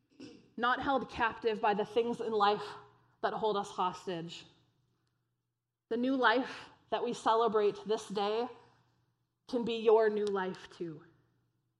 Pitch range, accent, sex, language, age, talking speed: 165-220 Hz, American, female, English, 20-39, 130 wpm